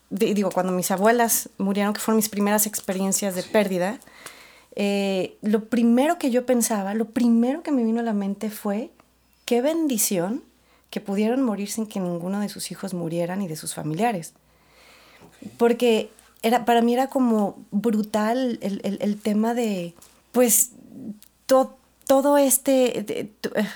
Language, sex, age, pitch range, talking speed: Spanish, female, 30-49, 200-240 Hz, 150 wpm